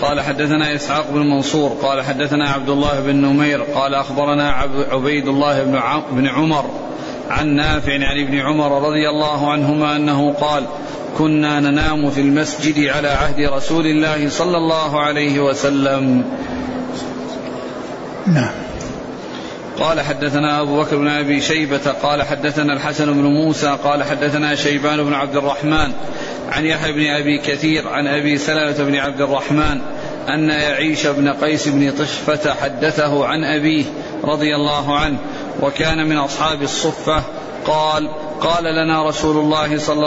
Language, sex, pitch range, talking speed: Arabic, male, 145-155 Hz, 140 wpm